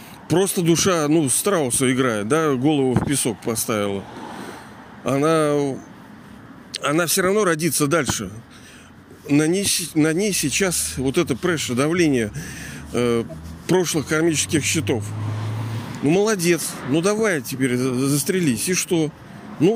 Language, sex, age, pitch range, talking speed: Russian, male, 40-59, 135-180 Hz, 115 wpm